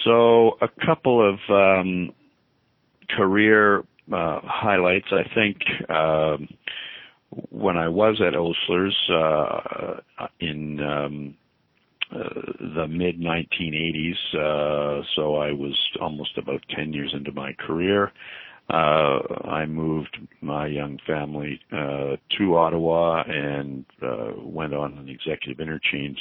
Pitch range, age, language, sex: 70-85 Hz, 50-69, English, male